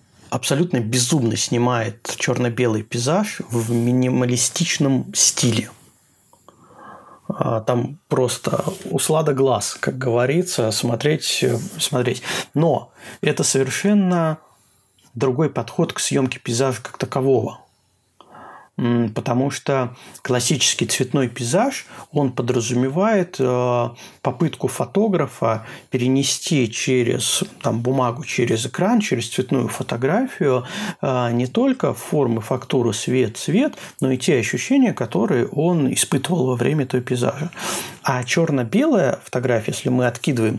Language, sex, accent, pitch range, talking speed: Russian, male, native, 120-155 Hz, 100 wpm